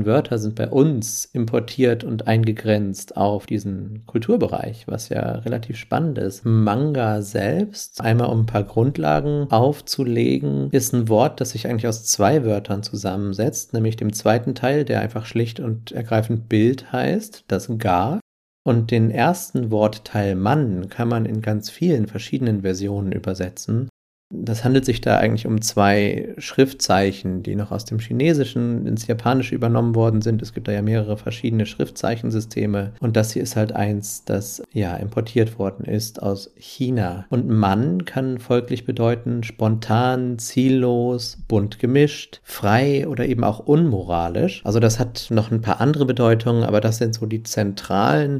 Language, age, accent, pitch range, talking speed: German, 40-59, German, 105-125 Hz, 155 wpm